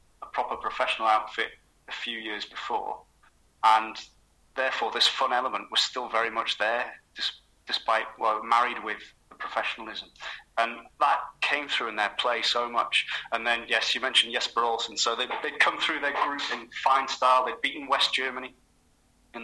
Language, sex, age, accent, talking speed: English, male, 30-49, British, 170 wpm